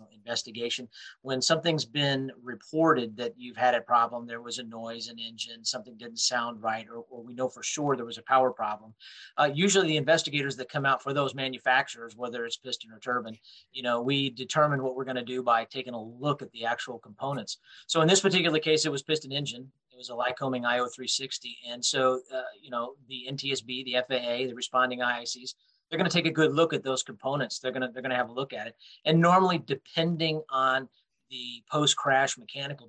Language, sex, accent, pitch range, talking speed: English, male, American, 120-140 Hz, 205 wpm